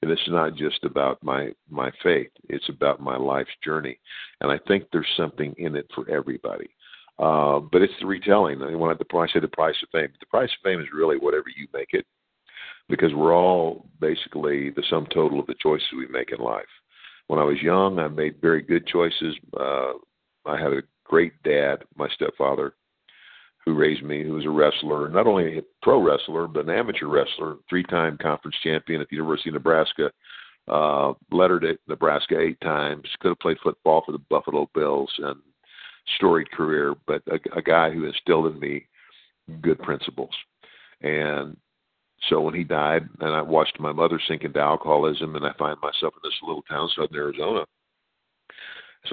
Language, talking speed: English, 185 wpm